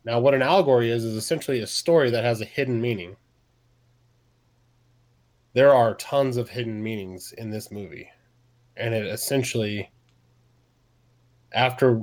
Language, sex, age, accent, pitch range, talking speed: English, male, 20-39, American, 110-120 Hz, 135 wpm